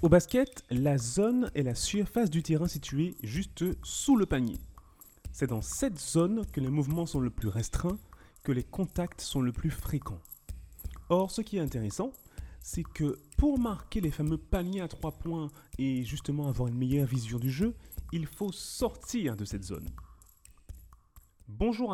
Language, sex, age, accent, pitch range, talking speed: French, male, 30-49, French, 120-175 Hz, 170 wpm